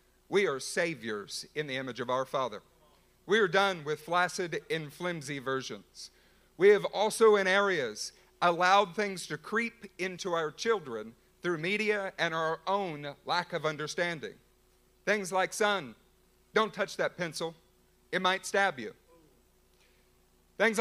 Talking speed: 140 wpm